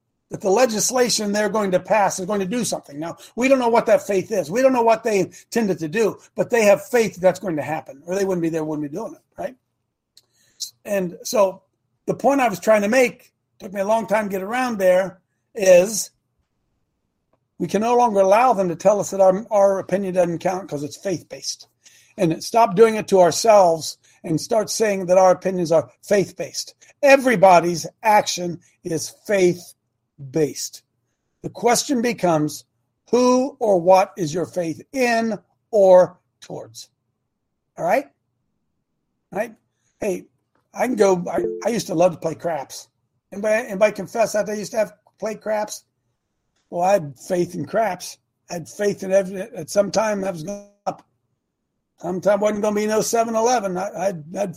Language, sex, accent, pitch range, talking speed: English, male, American, 165-215 Hz, 185 wpm